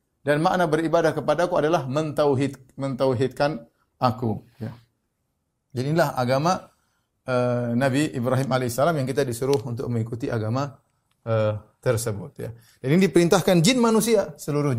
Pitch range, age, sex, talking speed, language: 125-170 Hz, 30-49, male, 115 wpm, Indonesian